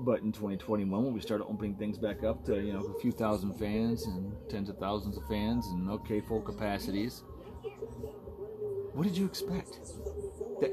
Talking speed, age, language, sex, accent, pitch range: 180 wpm, 30-49, English, male, American, 105-170 Hz